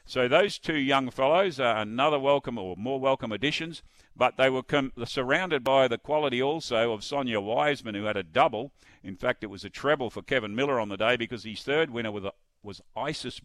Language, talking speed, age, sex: English, 215 wpm, 50-69, male